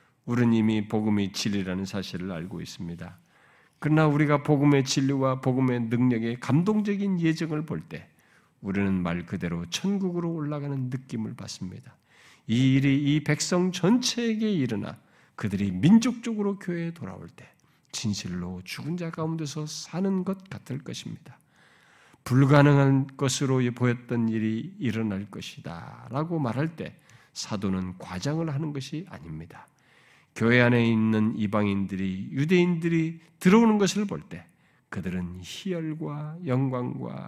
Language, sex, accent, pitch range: Korean, male, native, 115-170 Hz